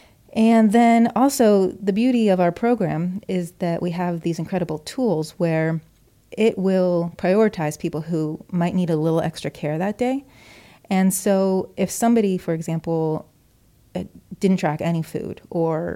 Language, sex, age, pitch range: English, female, 30-49, 160-190 Hz